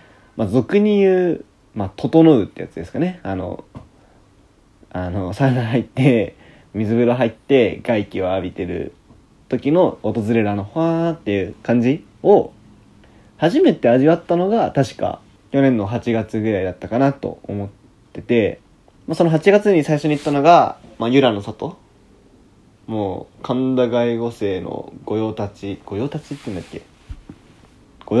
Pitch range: 105-140 Hz